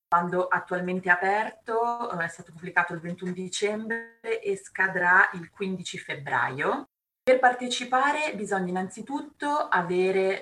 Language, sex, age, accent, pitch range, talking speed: Italian, female, 30-49, native, 160-205 Hz, 115 wpm